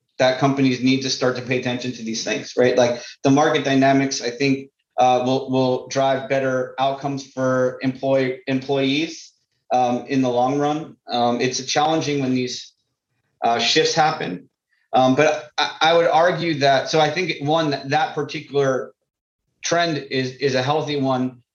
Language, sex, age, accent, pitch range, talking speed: English, male, 30-49, American, 130-145 Hz, 170 wpm